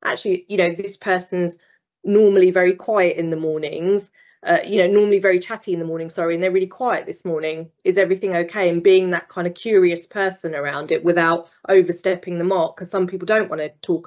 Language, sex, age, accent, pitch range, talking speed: English, female, 20-39, British, 175-210 Hz, 215 wpm